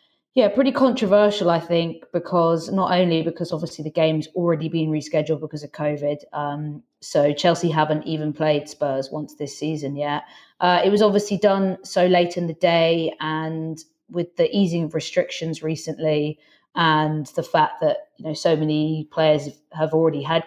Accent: British